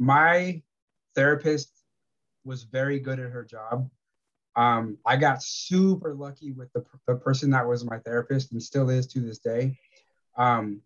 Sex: male